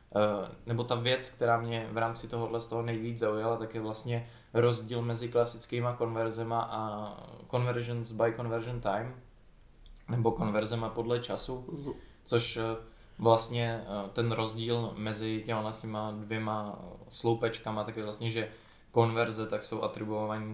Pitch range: 105-115 Hz